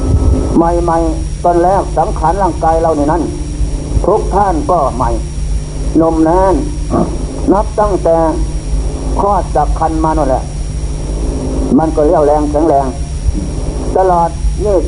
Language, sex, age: Thai, male, 60-79